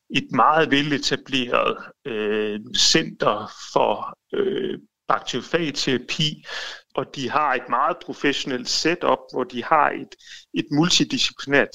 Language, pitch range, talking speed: Danish, 125-175 Hz, 95 wpm